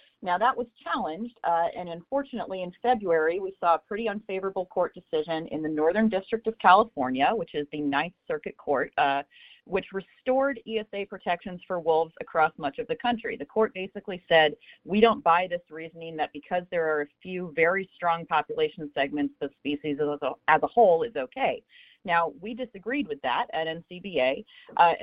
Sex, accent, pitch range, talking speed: female, American, 165-230 Hz, 175 wpm